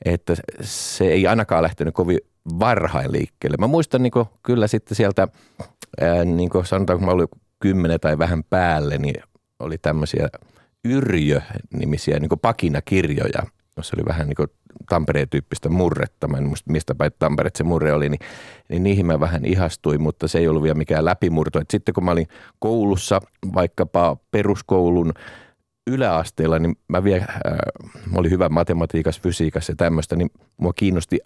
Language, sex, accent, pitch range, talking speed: Finnish, male, native, 80-100 Hz, 140 wpm